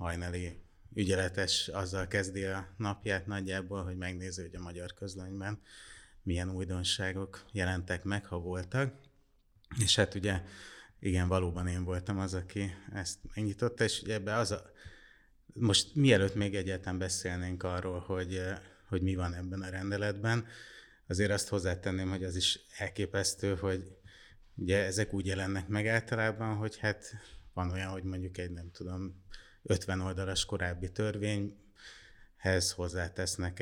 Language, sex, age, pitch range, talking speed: Hungarian, male, 30-49, 90-100 Hz, 135 wpm